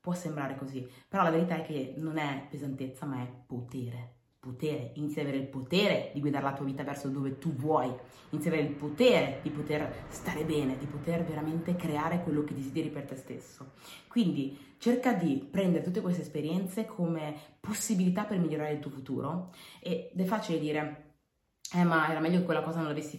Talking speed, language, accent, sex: 195 wpm, Italian, native, female